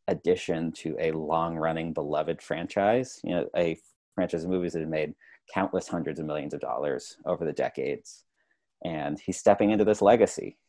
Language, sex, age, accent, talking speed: English, male, 30-49, American, 175 wpm